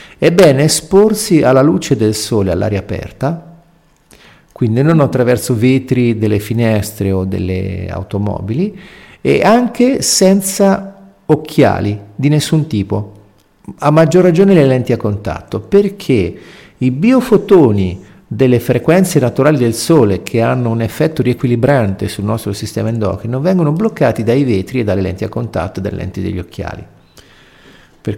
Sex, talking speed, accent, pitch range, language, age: male, 135 wpm, native, 105-175 Hz, Italian, 50-69